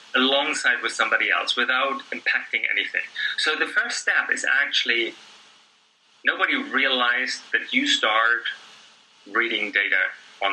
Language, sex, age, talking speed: English, male, 30-49, 120 wpm